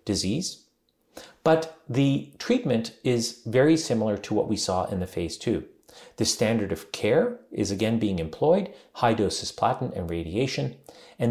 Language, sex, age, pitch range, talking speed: English, male, 40-59, 95-130 Hz, 155 wpm